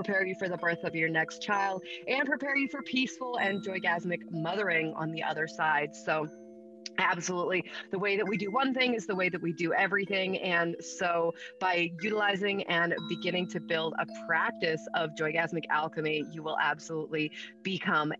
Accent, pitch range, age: American, 155-190 Hz, 30-49